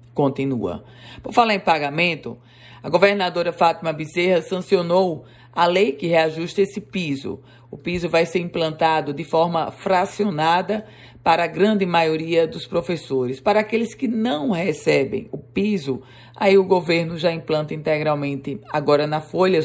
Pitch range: 145-185 Hz